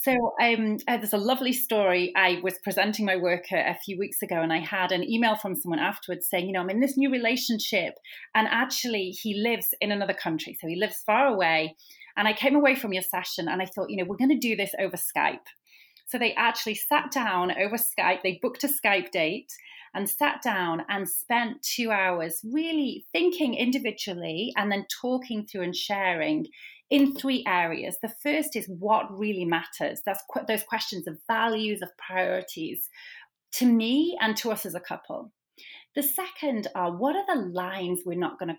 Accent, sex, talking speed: British, female, 195 wpm